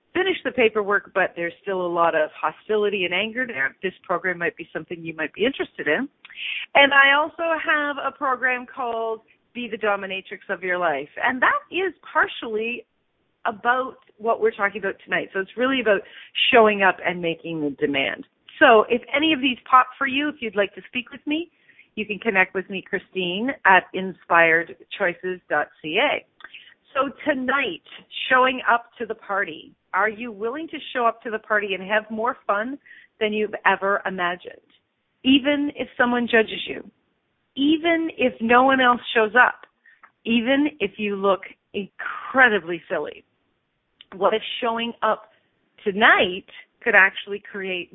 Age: 40-59